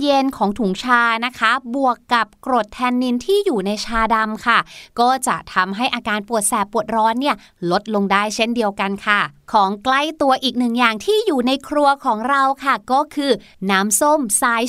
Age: 30-49